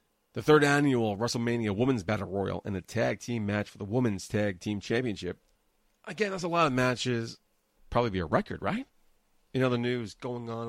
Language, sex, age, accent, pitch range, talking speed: English, male, 30-49, American, 100-130 Hz, 190 wpm